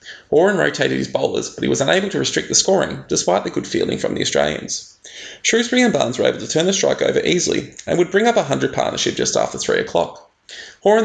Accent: Australian